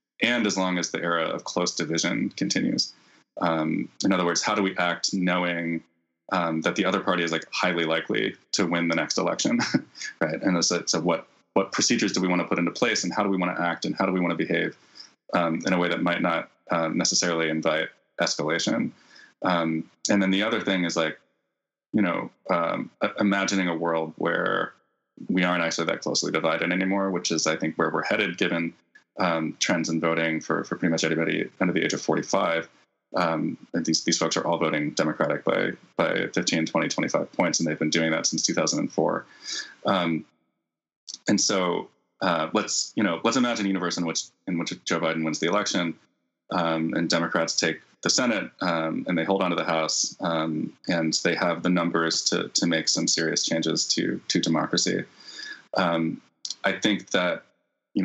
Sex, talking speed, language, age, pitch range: male, 200 wpm, English, 20-39, 80-90 Hz